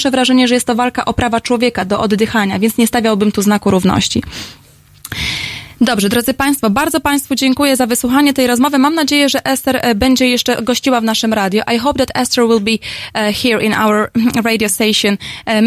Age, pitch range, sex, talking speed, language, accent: 20-39, 210-250 Hz, female, 190 wpm, Polish, native